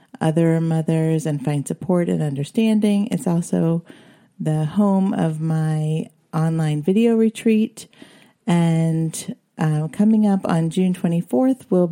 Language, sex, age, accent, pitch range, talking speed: English, female, 40-59, American, 165-205 Hz, 120 wpm